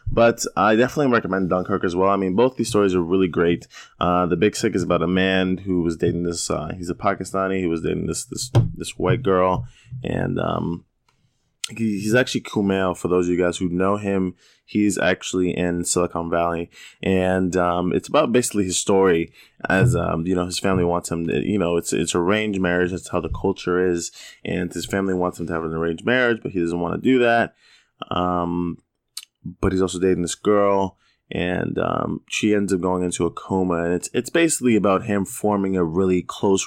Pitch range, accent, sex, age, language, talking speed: 85-105 Hz, American, male, 20-39, English, 215 wpm